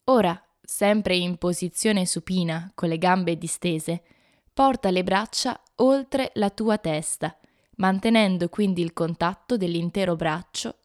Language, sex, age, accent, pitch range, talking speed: Italian, female, 20-39, native, 170-215 Hz, 120 wpm